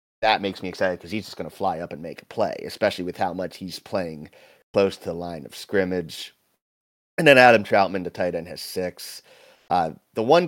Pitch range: 90-100 Hz